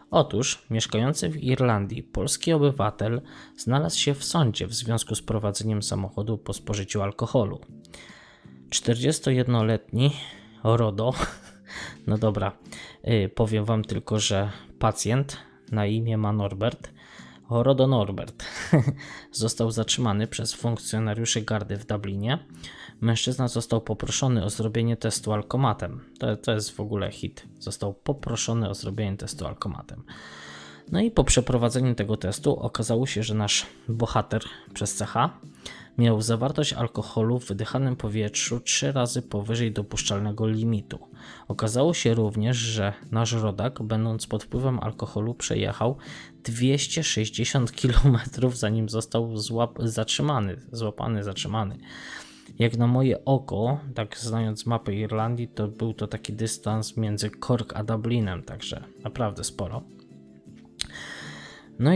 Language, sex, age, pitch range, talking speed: Polish, male, 20-39, 105-120 Hz, 120 wpm